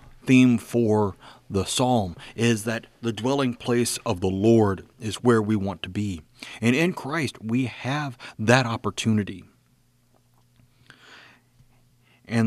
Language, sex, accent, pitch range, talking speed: English, male, American, 110-130 Hz, 125 wpm